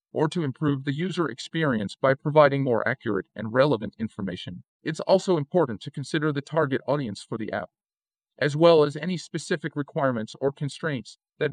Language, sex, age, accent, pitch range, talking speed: English, male, 40-59, American, 120-155 Hz, 170 wpm